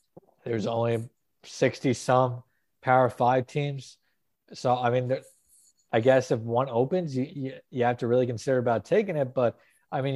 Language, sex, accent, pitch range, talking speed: English, male, American, 120-145 Hz, 160 wpm